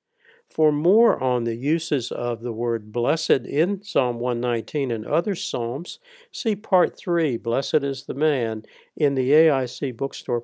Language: English